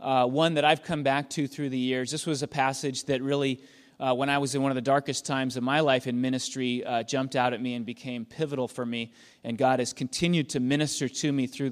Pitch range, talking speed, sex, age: 130-175 Hz, 255 wpm, male, 30-49